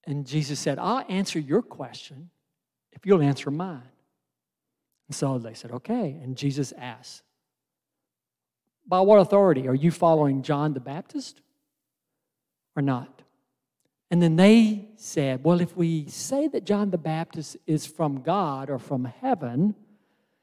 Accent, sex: American, male